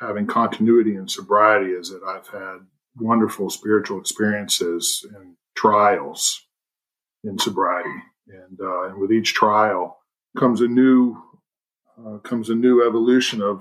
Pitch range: 95-115 Hz